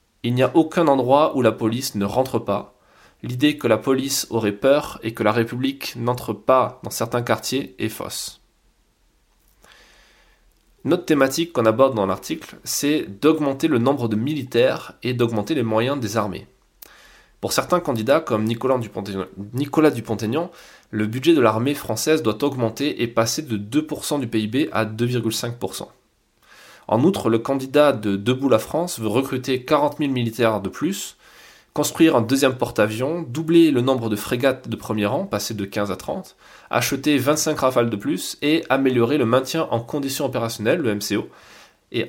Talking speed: 165 wpm